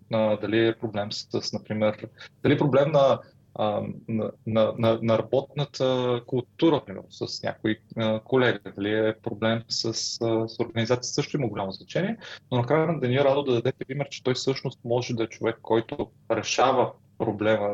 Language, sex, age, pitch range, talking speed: Bulgarian, male, 30-49, 110-135 Hz, 160 wpm